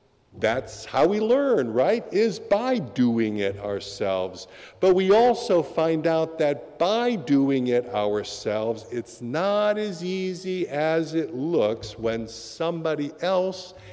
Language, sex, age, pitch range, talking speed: English, male, 50-69, 115-165 Hz, 130 wpm